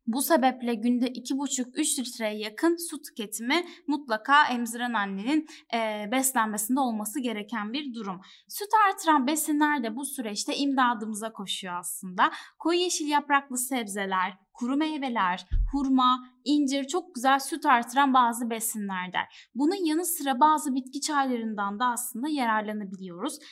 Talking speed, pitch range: 125 wpm, 220-295 Hz